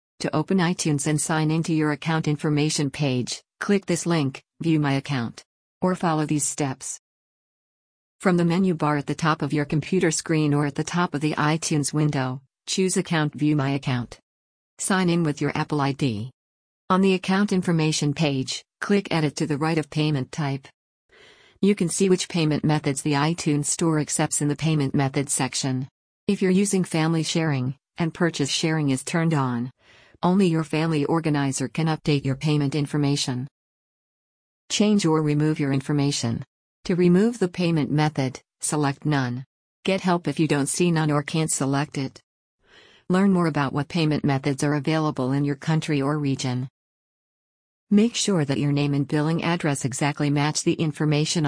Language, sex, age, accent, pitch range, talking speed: English, female, 50-69, American, 140-165 Hz, 170 wpm